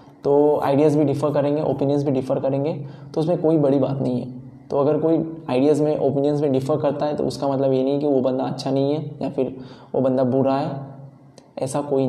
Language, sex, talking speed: Hindi, male, 225 wpm